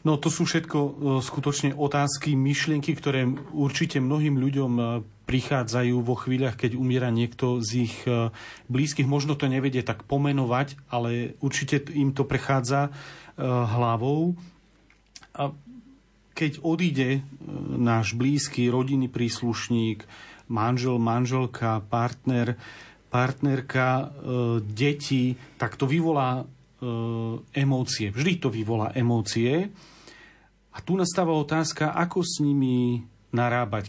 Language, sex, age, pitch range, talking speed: Slovak, male, 40-59, 120-145 Hz, 105 wpm